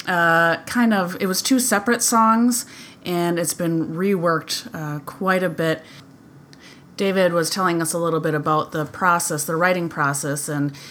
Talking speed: 165 wpm